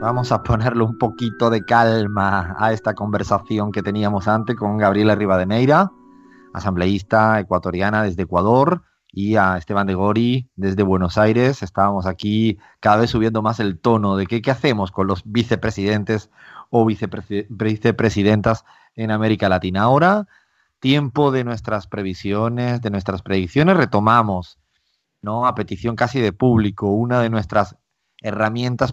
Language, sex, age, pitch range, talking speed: Spanish, male, 30-49, 100-120 Hz, 140 wpm